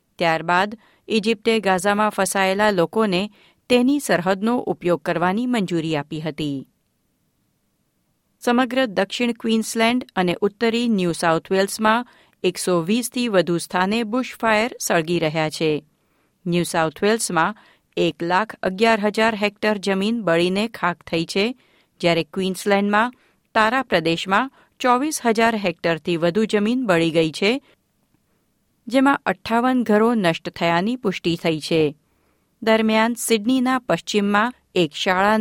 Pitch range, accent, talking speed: 170-230 Hz, native, 105 wpm